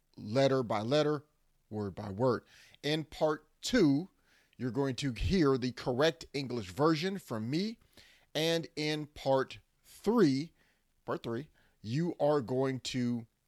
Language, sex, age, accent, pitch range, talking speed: English, male, 30-49, American, 125-170 Hz, 130 wpm